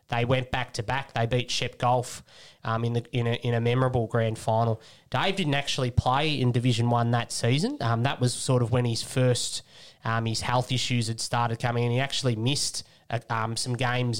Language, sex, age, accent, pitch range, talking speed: English, male, 20-39, Australian, 115-125 Hz, 215 wpm